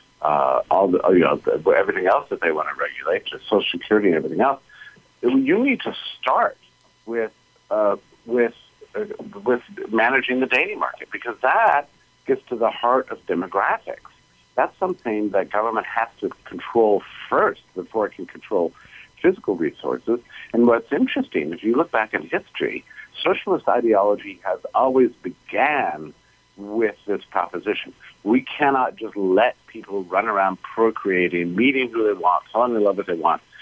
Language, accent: English, American